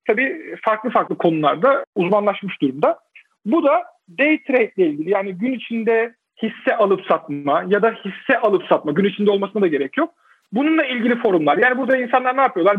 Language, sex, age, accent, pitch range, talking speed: Turkish, male, 50-69, native, 190-265 Hz, 175 wpm